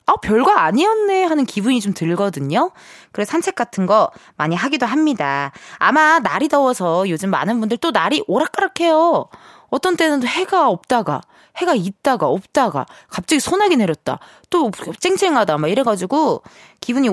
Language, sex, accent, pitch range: Korean, female, native, 195-310 Hz